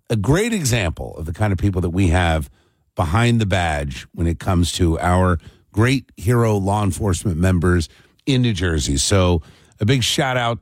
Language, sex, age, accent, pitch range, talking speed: English, male, 50-69, American, 90-115 Hz, 175 wpm